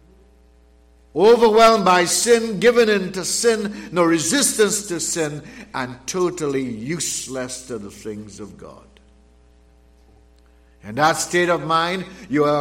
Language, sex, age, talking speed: English, male, 60-79, 125 wpm